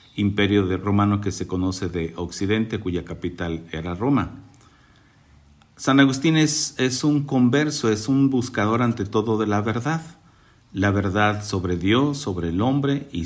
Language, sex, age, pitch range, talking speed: Spanish, male, 50-69, 95-120 Hz, 155 wpm